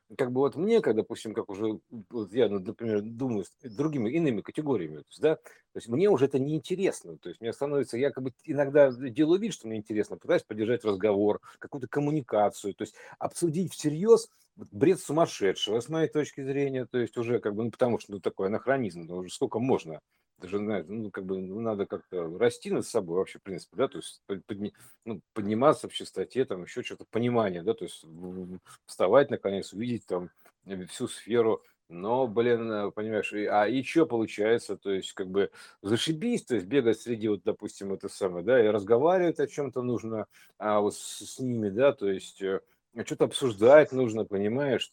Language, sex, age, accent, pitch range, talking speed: Russian, male, 50-69, native, 105-160 Hz, 185 wpm